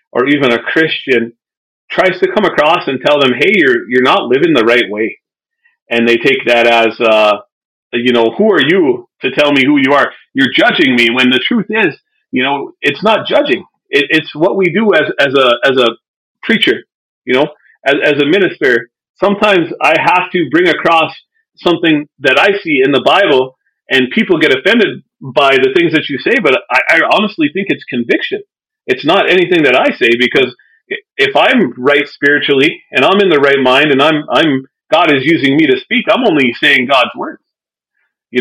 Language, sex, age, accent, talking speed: English, male, 40-59, American, 200 wpm